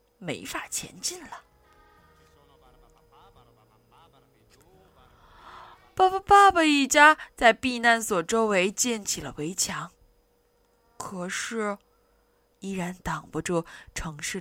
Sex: female